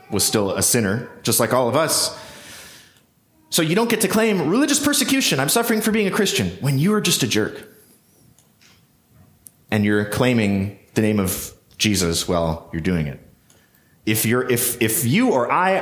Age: 30-49